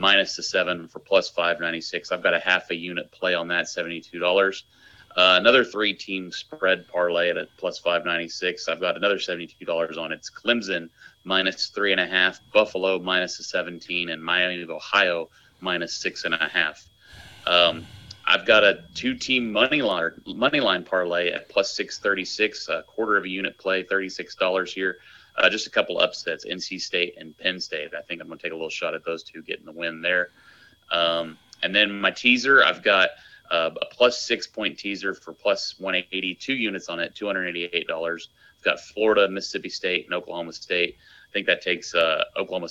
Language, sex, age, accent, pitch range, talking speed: English, male, 30-49, American, 85-95 Hz, 205 wpm